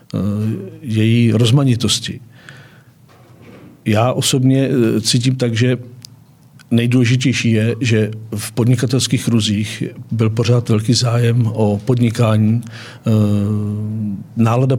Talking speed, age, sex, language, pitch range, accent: 80 wpm, 50-69, male, Czech, 110-125 Hz, native